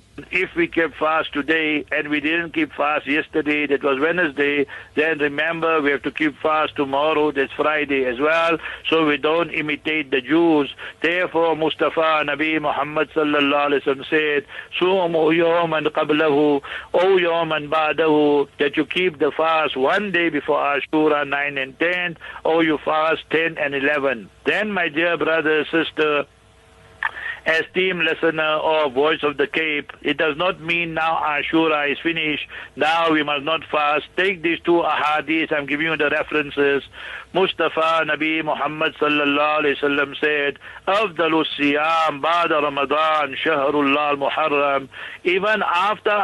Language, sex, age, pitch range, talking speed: English, male, 60-79, 145-165 Hz, 150 wpm